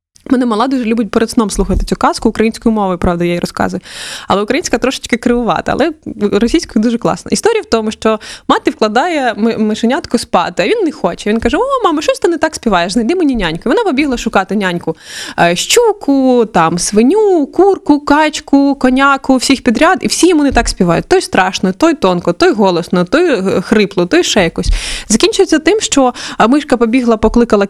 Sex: female